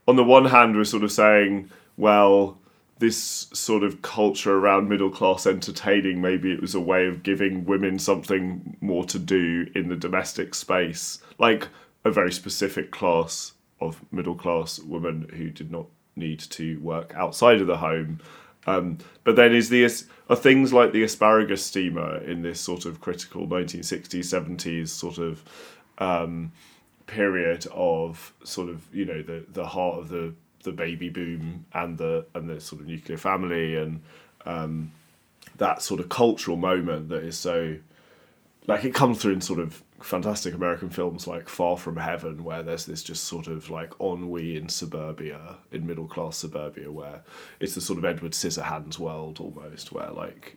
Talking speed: 170 wpm